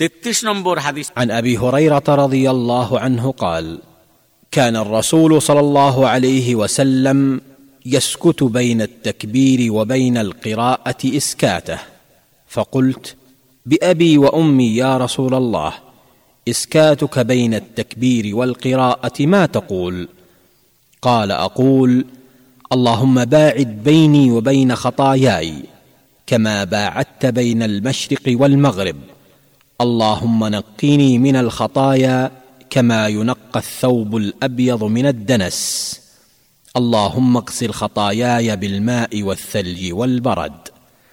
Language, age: Bengali, 40-59